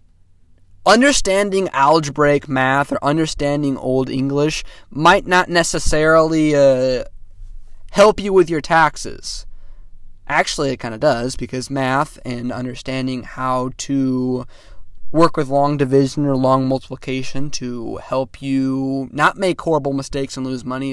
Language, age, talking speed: English, 20-39, 125 wpm